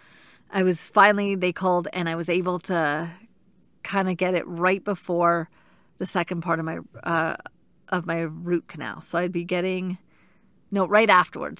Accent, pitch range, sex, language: American, 170-195 Hz, female, English